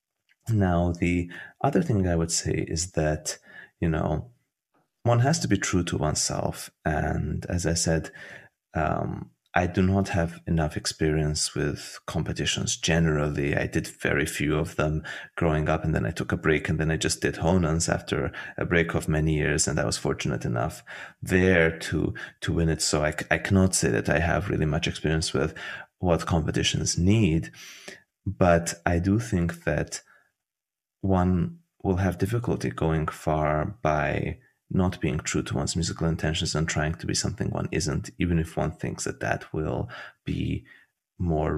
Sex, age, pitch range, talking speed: male, 30-49, 80-95 Hz, 170 wpm